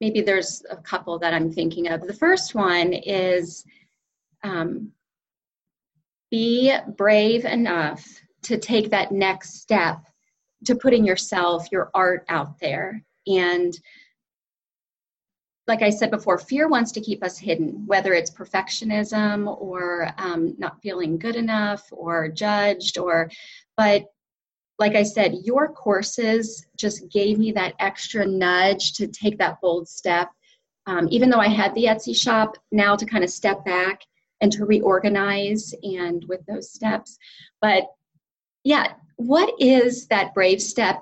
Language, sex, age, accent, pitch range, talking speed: English, female, 30-49, American, 175-220 Hz, 140 wpm